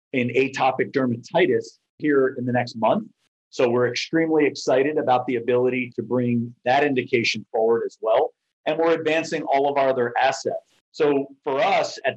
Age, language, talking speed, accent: 50-69, English, 170 wpm, American